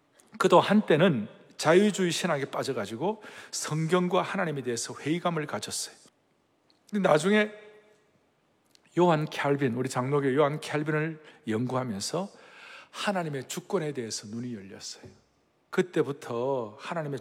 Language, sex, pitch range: Korean, male, 120-170 Hz